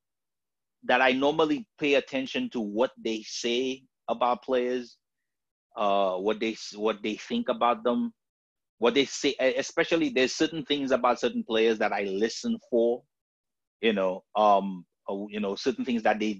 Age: 30-49